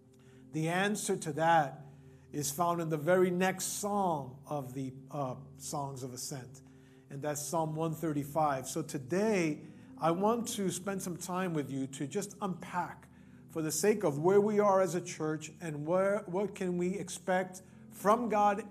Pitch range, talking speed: 145-185 Hz, 165 wpm